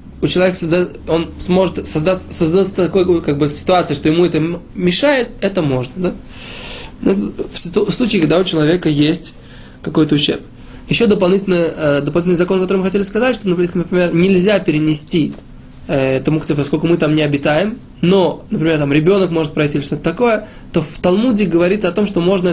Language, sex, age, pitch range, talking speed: Russian, male, 20-39, 155-190 Hz, 190 wpm